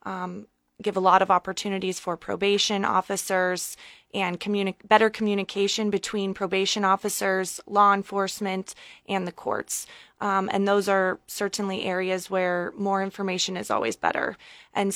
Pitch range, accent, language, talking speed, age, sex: 190-205 Hz, American, English, 130 wpm, 20-39, female